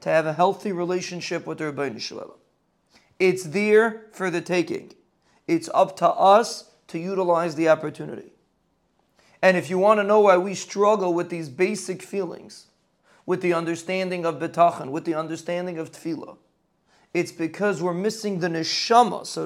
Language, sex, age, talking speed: English, male, 40-59, 160 wpm